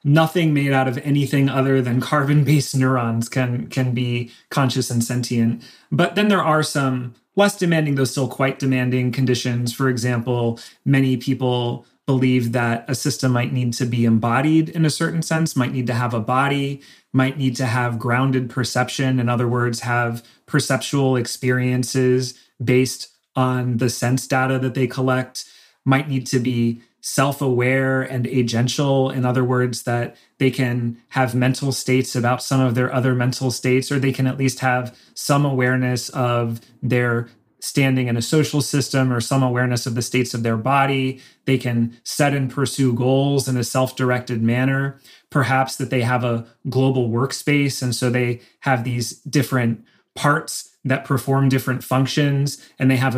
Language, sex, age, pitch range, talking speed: English, male, 30-49, 125-135 Hz, 165 wpm